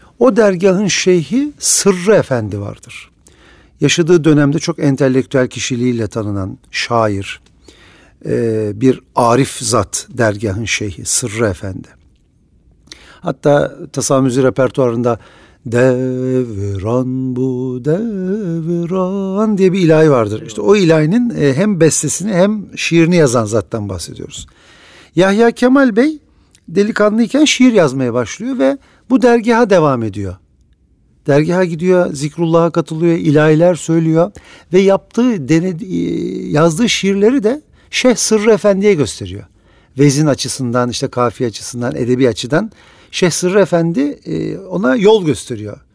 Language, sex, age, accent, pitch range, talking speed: Turkish, male, 50-69, native, 125-195 Hz, 105 wpm